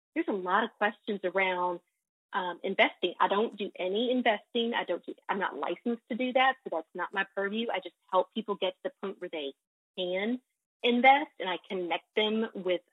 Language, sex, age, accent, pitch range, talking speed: English, female, 30-49, American, 190-245 Hz, 205 wpm